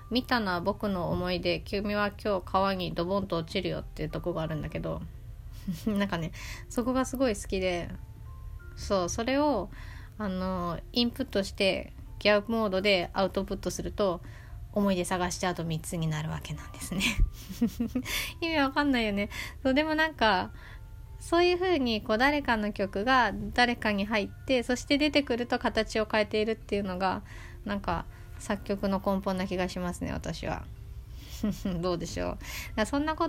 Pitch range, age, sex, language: 175-235 Hz, 20-39, female, Japanese